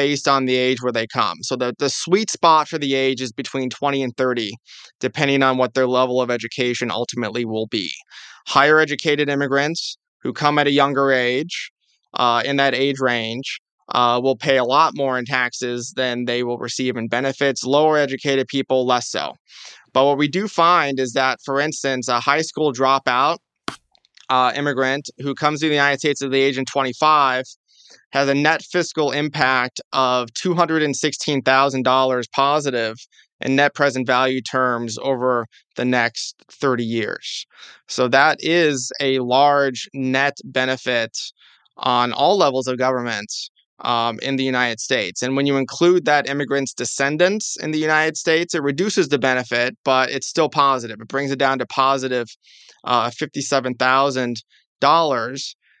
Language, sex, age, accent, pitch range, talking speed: English, male, 20-39, American, 125-145 Hz, 160 wpm